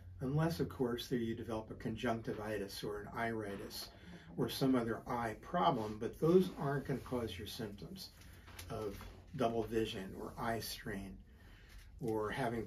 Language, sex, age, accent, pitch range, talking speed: English, male, 50-69, American, 100-125 Hz, 150 wpm